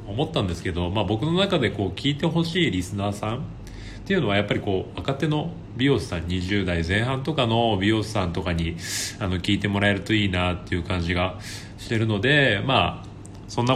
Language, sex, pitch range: Japanese, male, 95-145 Hz